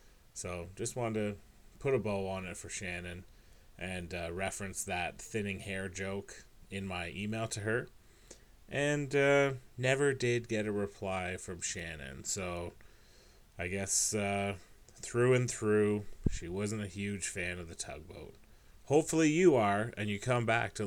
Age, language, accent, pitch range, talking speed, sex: 30-49, English, American, 90-115 Hz, 160 wpm, male